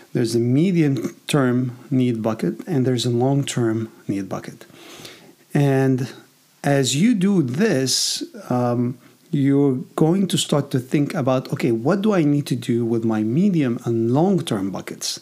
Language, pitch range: English, 125-155 Hz